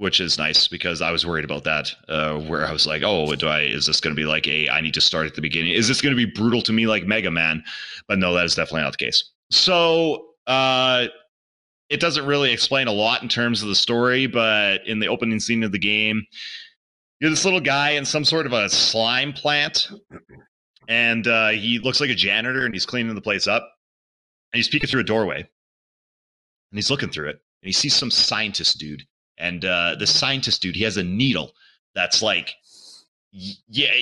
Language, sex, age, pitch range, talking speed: English, male, 30-49, 95-125 Hz, 220 wpm